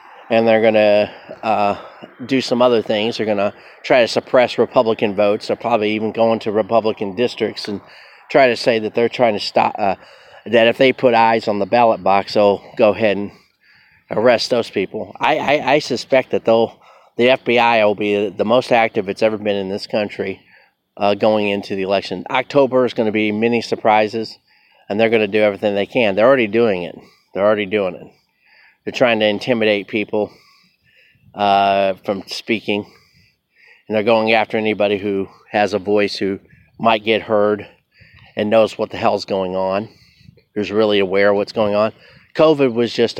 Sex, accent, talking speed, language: male, American, 190 wpm, English